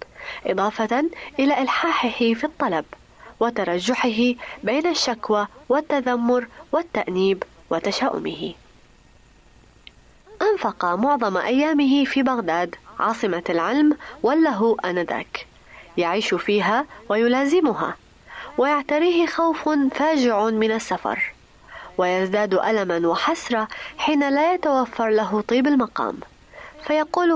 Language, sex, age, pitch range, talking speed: Arabic, female, 20-39, 195-285 Hz, 85 wpm